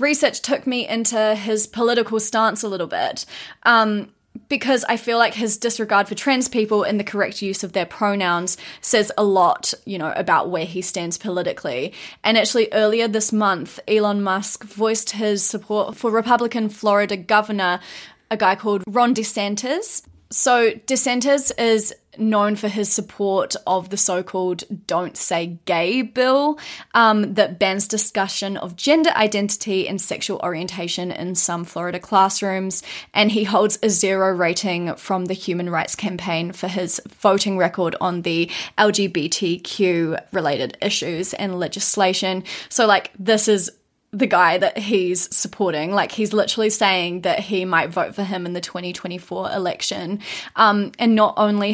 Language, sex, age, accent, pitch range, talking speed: English, female, 20-39, Australian, 185-220 Hz, 155 wpm